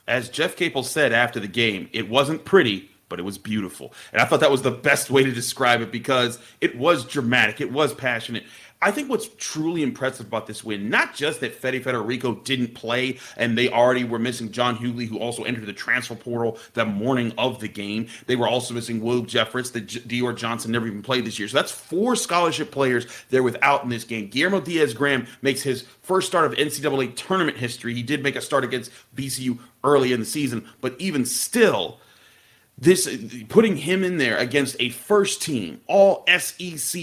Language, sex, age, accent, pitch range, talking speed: English, male, 40-59, American, 120-155 Hz, 205 wpm